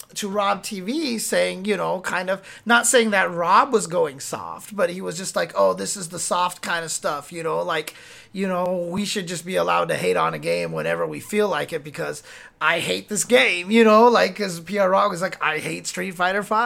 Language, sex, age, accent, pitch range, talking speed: English, male, 30-49, American, 160-215 Hz, 235 wpm